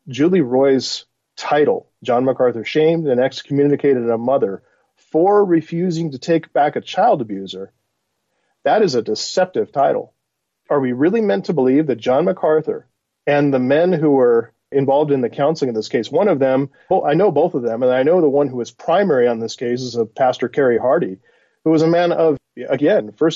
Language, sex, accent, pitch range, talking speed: English, male, American, 125-165 Hz, 195 wpm